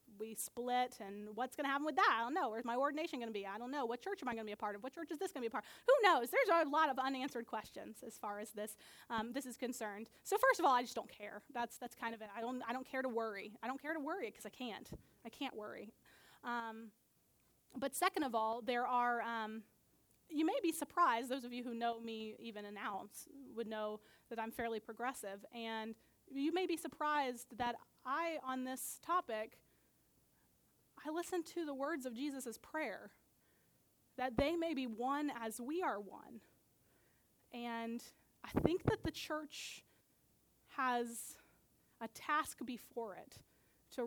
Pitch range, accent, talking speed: 225-280 Hz, American, 210 wpm